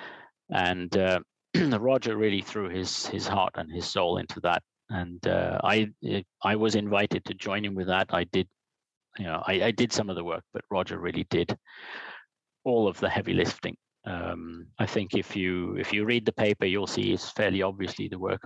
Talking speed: 200 wpm